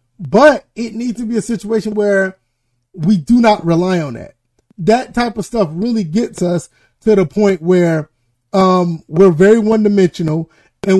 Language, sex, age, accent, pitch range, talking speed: English, male, 30-49, American, 185-235 Hz, 165 wpm